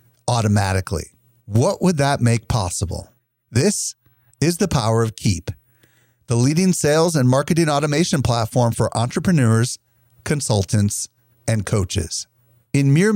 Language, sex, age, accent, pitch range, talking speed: English, male, 40-59, American, 110-145 Hz, 120 wpm